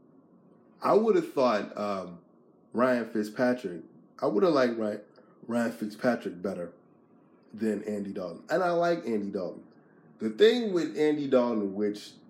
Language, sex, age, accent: English, male, 30-49, American